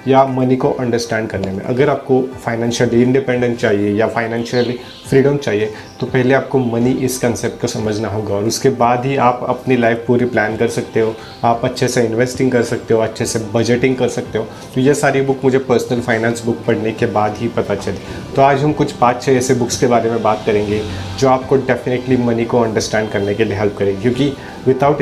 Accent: Indian